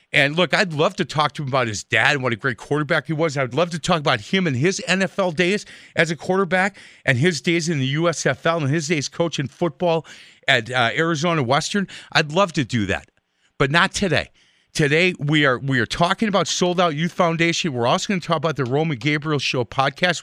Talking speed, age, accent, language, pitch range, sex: 225 wpm, 40-59, American, English, 130-175 Hz, male